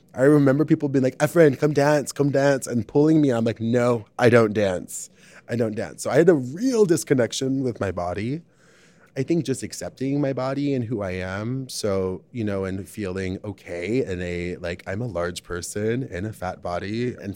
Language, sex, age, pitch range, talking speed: English, male, 20-39, 95-125 Hz, 205 wpm